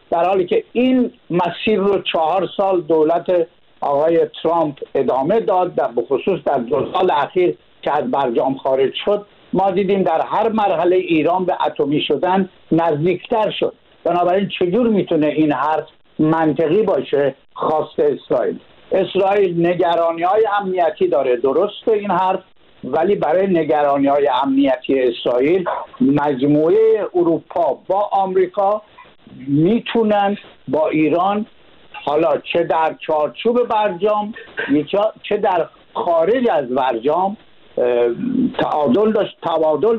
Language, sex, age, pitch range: Persian, male, 60-79, 155-205 Hz